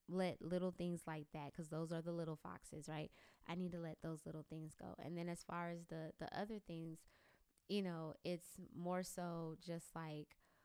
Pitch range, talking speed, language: 155-180 Hz, 205 wpm, English